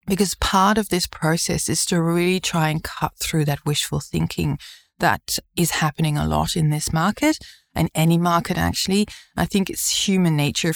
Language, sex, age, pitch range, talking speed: English, female, 20-39, 155-180 Hz, 180 wpm